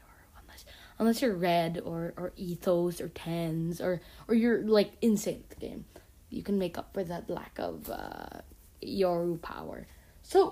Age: 10-29